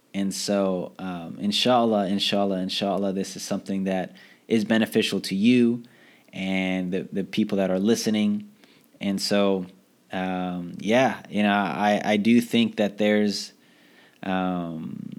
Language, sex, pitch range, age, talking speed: English, male, 100-120 Hz, 20-39, 135 wpm